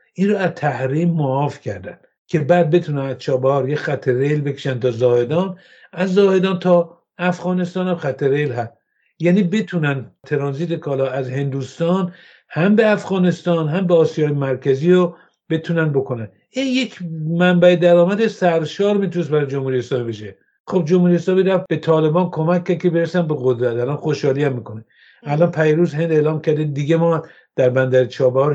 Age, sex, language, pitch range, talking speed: 60-79, male, English, 135-180 Hz, 150 wpm